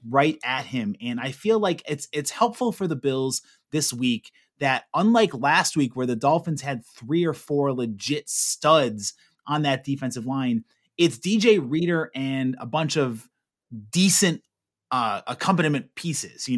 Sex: male